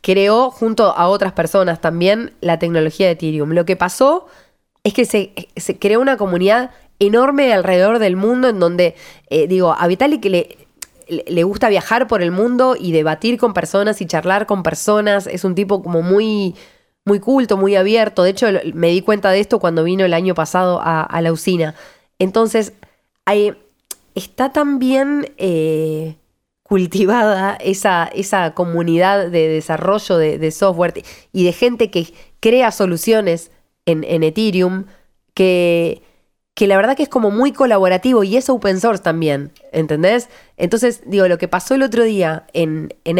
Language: Spanish